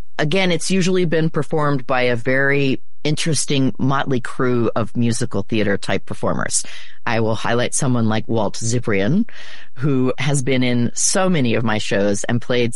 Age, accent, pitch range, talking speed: 30-49, American, 120-155 Hz, 160 wpm